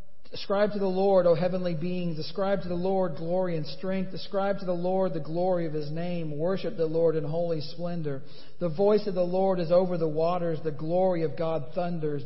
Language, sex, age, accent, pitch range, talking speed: English, male, 50-69, American, 165-185 Hz, 210 wpm